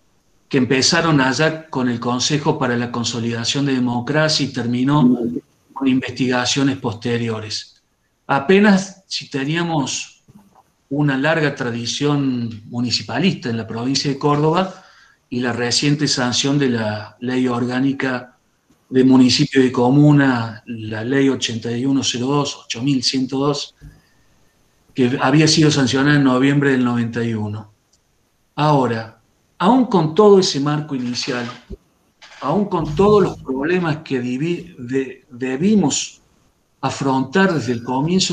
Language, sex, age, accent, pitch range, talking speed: Spanish, male, 40-59, Argentinian, 120-150 Hz, 110 wpm